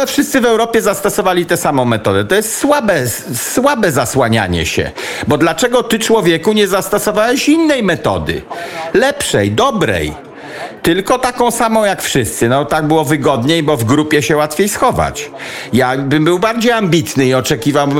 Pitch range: 155-225 Hz